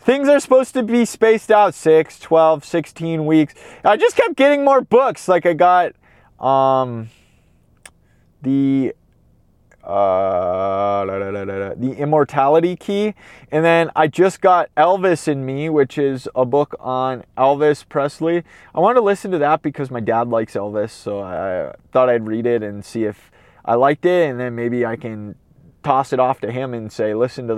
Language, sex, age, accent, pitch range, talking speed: English, male, 20-39, American, 115-170 Hz, 170 wpm